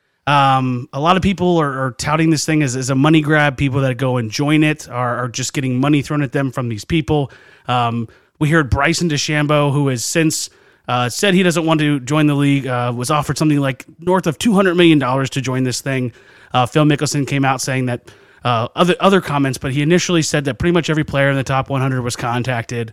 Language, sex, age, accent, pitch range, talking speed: English, male, 30-49, American, 125-160 Hz, 230 wpm